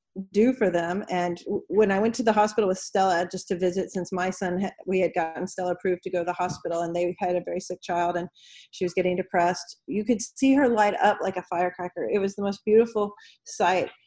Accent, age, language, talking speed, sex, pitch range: American, 40-59, English, 235 wpm, female, 175-210 Hz